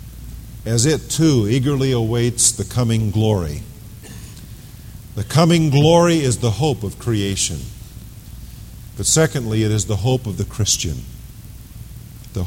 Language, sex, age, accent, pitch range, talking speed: English, male, 50-69, American, 105-130 Hz, 125 wpm